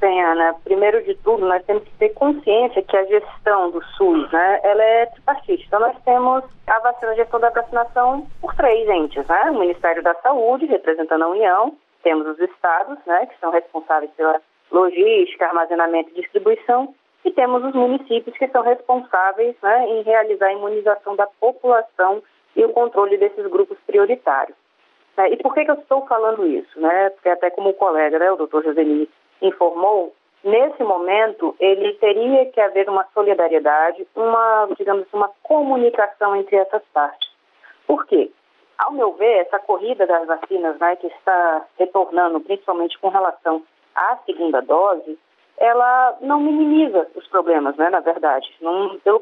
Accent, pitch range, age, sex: Brazilian, 180-260 Hz, 30-49, female